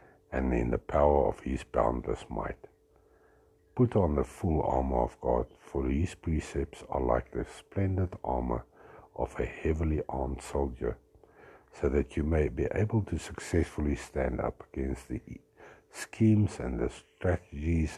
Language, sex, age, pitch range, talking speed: English, male, 60-79, 70-105 Hz, 145 wpm